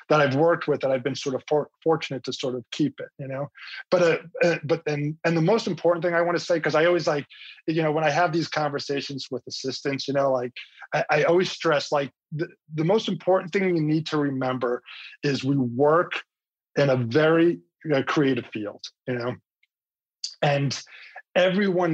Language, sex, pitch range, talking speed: English, male, 135-165 Hz, 200 wpm